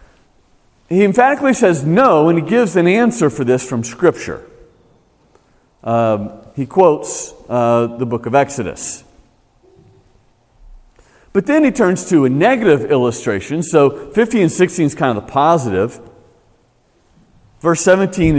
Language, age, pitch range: English, 40-59, 105-160 Hz